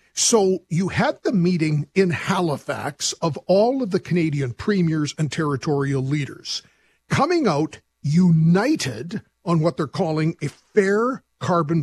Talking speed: 130 wpm